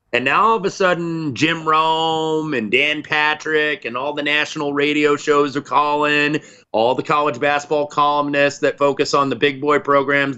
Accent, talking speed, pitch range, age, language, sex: American, 180 wpm, 115-145 Hz, 30-49, English, male